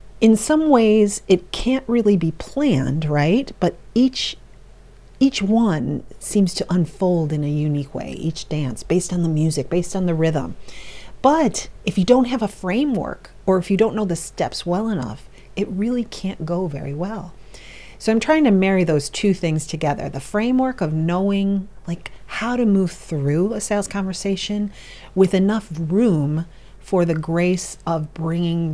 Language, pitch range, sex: English, 150-200 Hz, female